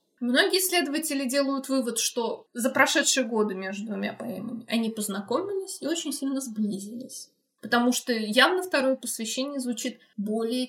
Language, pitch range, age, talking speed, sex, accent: Russian, 225-285 Hz, 20-39, 135 wpm, female, native